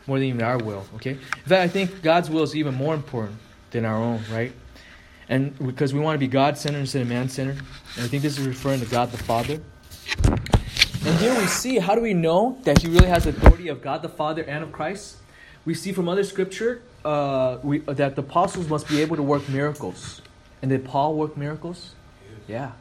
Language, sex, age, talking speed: English, male, 20-39, 220 wpm